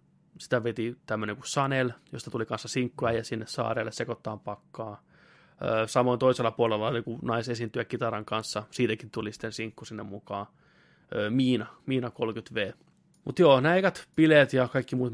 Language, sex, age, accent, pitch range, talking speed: Finnish, male, 20-39, native, 110-125 Hz, 145 wpm